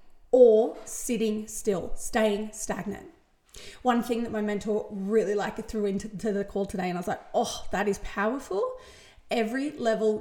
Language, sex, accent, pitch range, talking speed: English, female, Australian, 215-250 Hz, 165 wpm